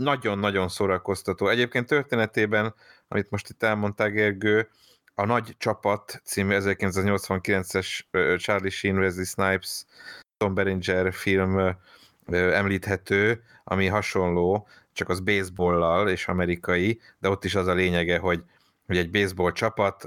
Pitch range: 85-100 Hz